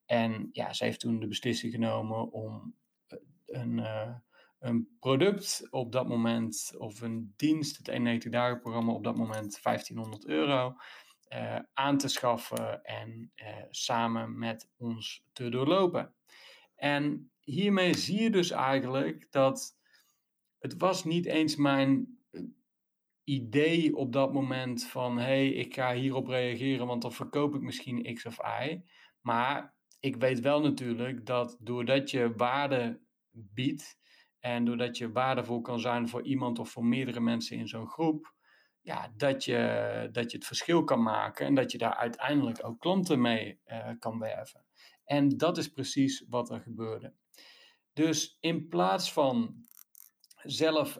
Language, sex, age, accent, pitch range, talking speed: Dutch, male, 30-49, Dutch, 120-145 Hz, 145 wpm